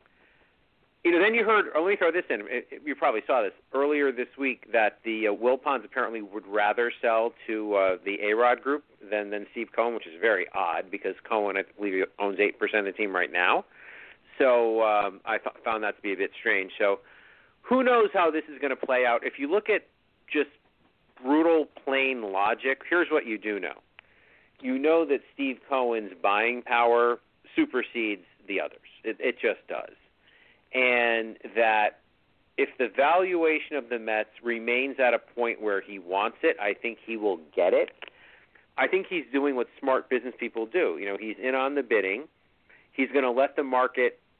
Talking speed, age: 195 wpm, 50-69